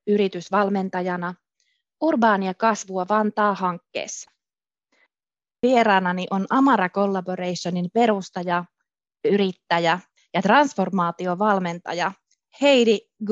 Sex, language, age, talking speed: female, Finnish, 20-39, 60 wpm